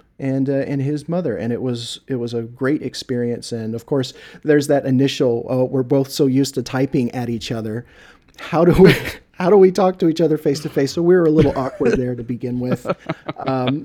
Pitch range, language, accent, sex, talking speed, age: 110-130 Hz, English, American, male, 230 wpm, 40-59